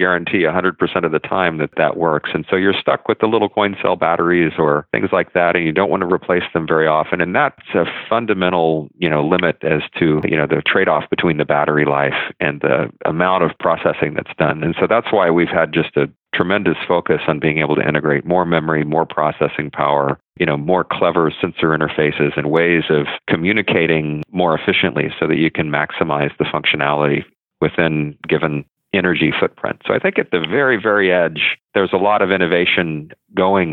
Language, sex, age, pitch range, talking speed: English, male, 40-59, 75-85 Hz, 200 wpm